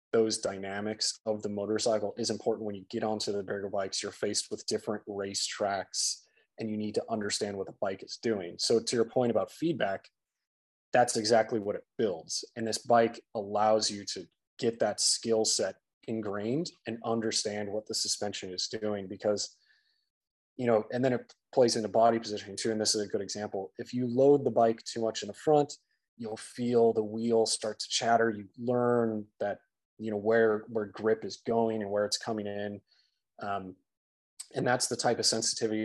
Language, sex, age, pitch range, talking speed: English, male, 20-39, 105-115 Hz, 195 wpm